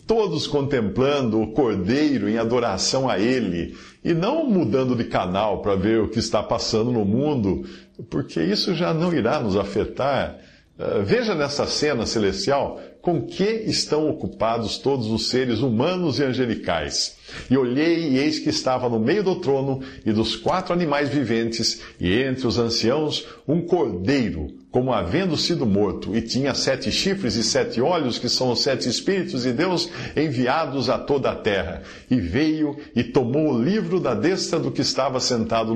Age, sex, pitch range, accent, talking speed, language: 50-69, male, 110-145 Hz, Brazilian, 165 wpm, Portuguese